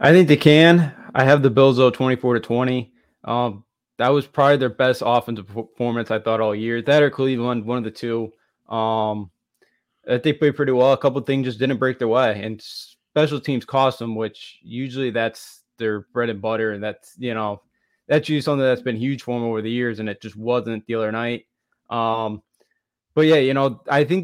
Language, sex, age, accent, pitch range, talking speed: English, male, 20-39, American, 115-135 Hz, 210 wpm